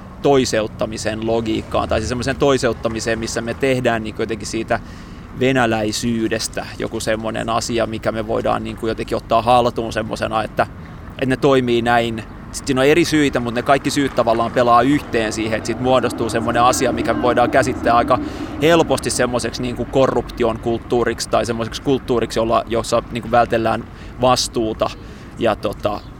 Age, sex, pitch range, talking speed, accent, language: 20-39, male, 110-125 Hz, 150 wpm, native, Finnish